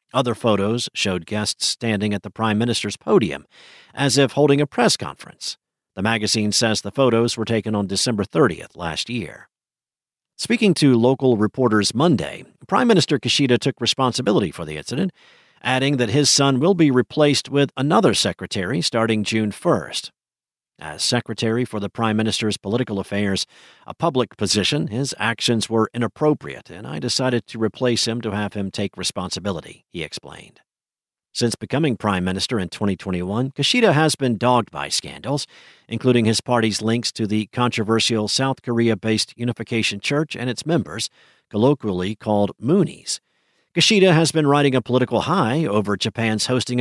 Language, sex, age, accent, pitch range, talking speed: English, male, 50-69, American, 105-130 Hz, 155 wpm